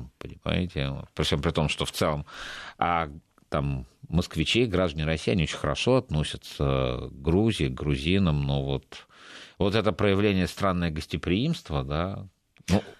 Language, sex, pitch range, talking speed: Russian, male, 80-110 Hz, 135 wpm